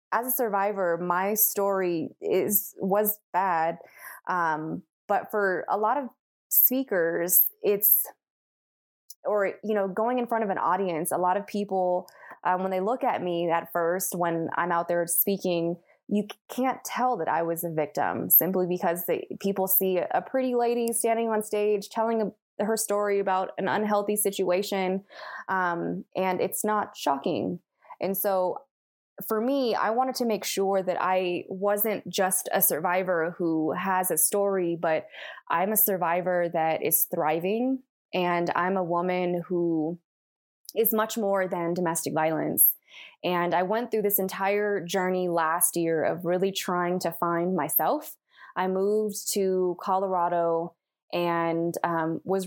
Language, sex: English, female